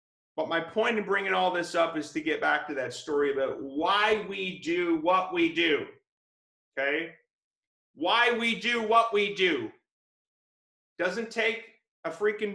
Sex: male